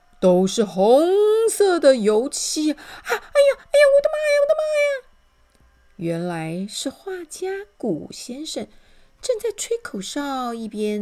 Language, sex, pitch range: Chinese, female, 200-300 Hz